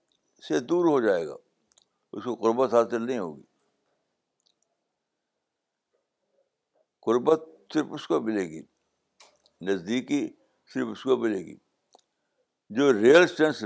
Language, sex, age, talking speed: Urdu, male, 60-79, 115 wpm